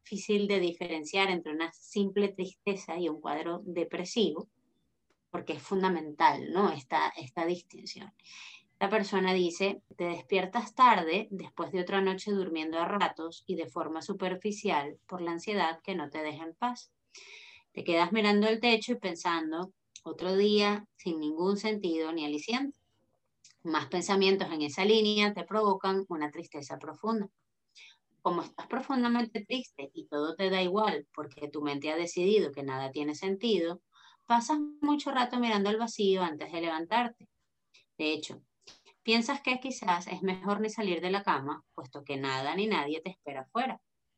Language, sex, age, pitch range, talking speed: Spanish, female, 30-49, 160-210 Hz, 155 wpm